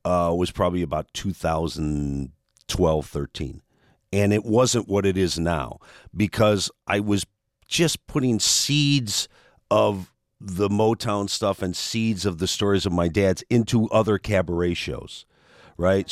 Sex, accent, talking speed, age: male, American, 135 wpm, 50-69